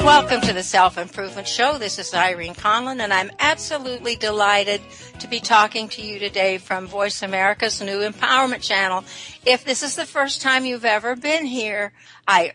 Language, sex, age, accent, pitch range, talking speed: English, female, 60-79, American, 195-245 Hz, 170 wpm